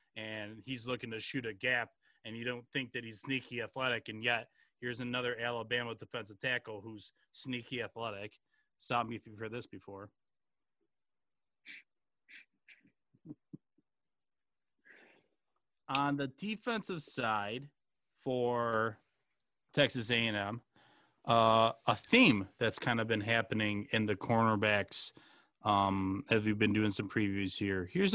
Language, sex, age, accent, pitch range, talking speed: English, male, 30-49, American, 110-140 Hz, 125 wpm